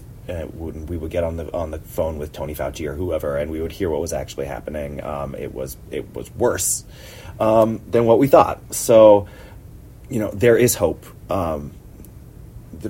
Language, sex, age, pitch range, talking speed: English, male, 30-49, 90-110 Hz, 190 wpm